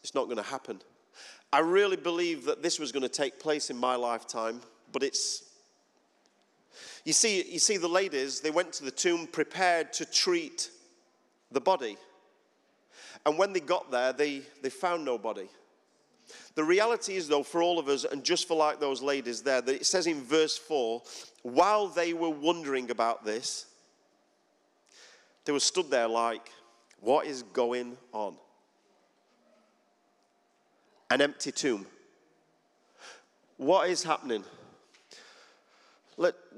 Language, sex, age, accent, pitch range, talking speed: English, male, 40-59, British, 130-175 Hz, 145 wpm